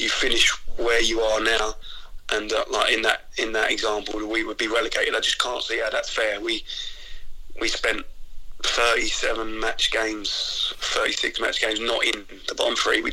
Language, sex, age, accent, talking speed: English, male, 20-39, British, 190 wpm